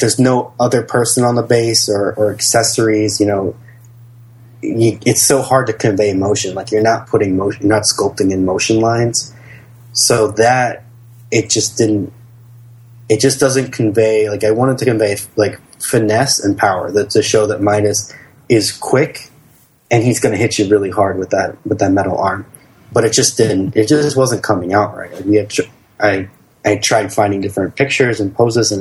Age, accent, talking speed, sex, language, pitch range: 20-39, American, 190 wpm, male, English, 105-120 Hz